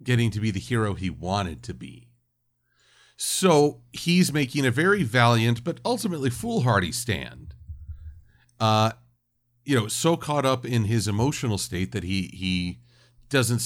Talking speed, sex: 145 wpm, male